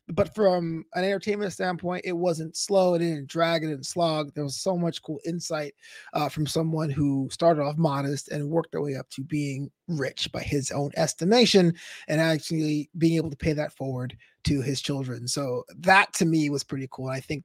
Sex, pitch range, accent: male, 145-180 Hz, American